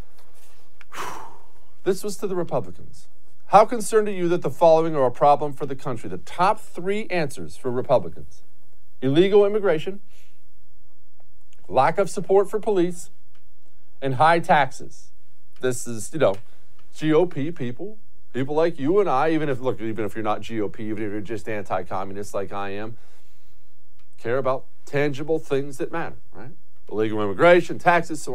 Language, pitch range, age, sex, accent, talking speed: English, 130-210 Hz, 40-59, male, American, 150 wpm